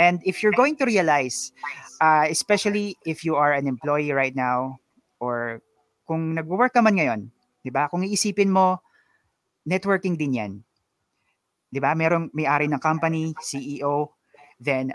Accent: native